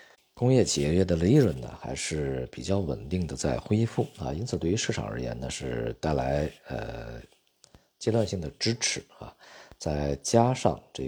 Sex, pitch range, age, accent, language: male, 70-100 Hz, 50-69, native, Chinese